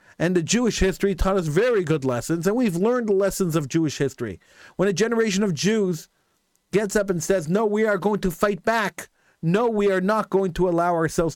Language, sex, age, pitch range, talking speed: English, male, 40-59, 170-240 Hz, 215 wpm